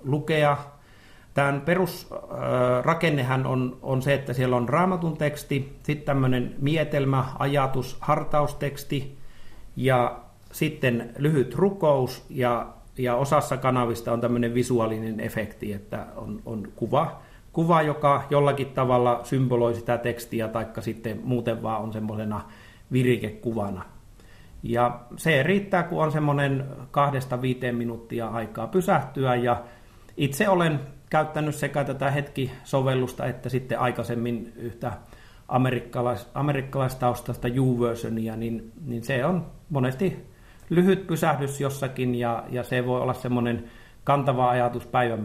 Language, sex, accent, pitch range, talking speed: Finnish, male, native, 115-140 Hz, 120 wpm